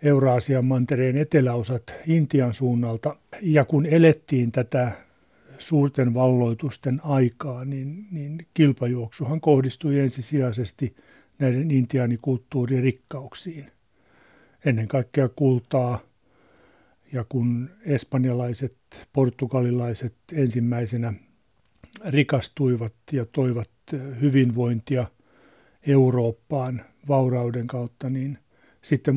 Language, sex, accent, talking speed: Finnish, male, native, 75 wpm